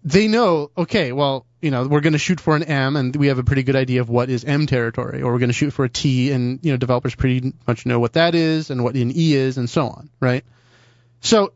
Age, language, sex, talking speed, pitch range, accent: 30-49, English, male, 275 wpm, 125-165 Hz, American